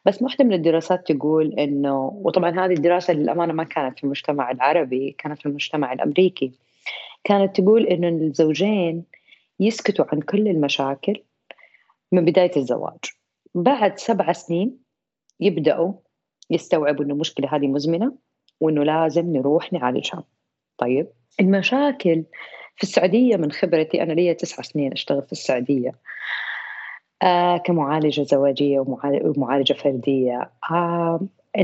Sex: female